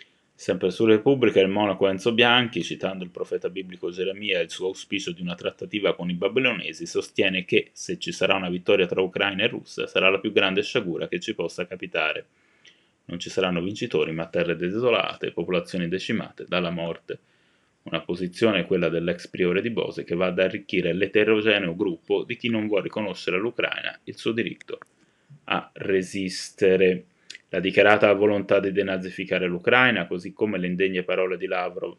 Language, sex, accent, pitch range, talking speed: Italian, male, native, 90-110 Hz, 170 wpm